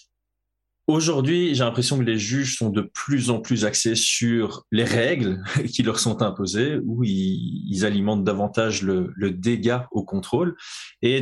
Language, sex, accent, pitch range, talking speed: French, male, French, 105-125 Hz, 155 wpm